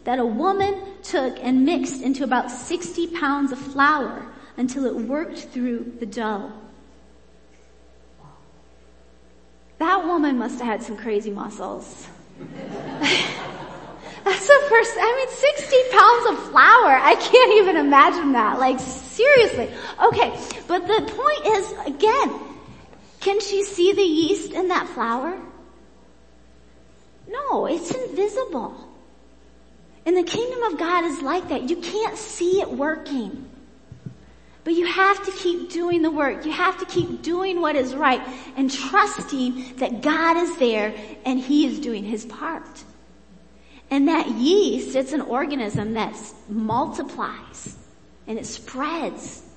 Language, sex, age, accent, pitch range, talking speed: English, female, 30-49, American, 240-355 Hz, 135 wpm